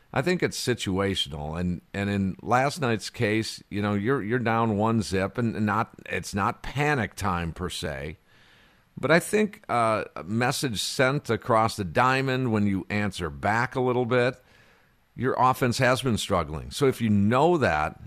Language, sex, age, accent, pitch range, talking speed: English, male, 50-69, American, 100-130 Hz, 175 wpm